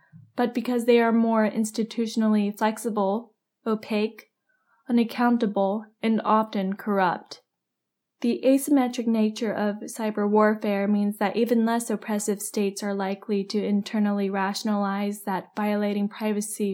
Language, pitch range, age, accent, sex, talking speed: English, 205-225 Hz, 10-29, American, female, 115 wpm